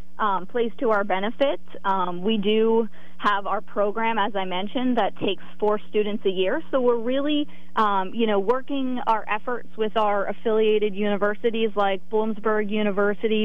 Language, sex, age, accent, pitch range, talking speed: English, female, 30-49, American, 195-235 Hz, 160 wpm